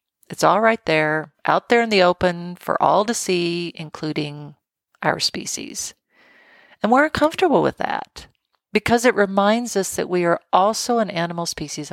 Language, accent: English, American